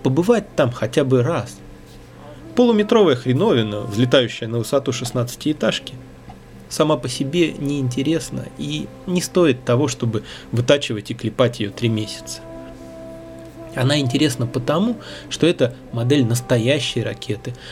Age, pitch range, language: 20-39, 115-140 Hz, Russian